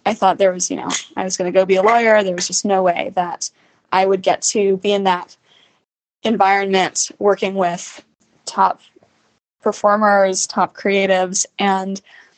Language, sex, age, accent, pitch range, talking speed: English, female, 10-29, American, 195-235 Hz, 170 wpm